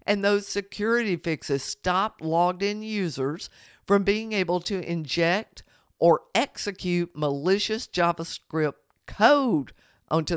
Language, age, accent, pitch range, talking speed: English, 50-69, American, 160-210 Hz, 110 wpm